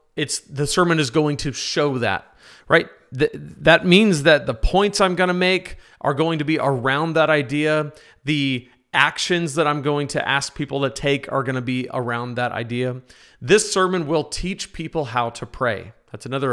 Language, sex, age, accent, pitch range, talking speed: English, male, 40-59, American, 140-180 Hz, 190 wpm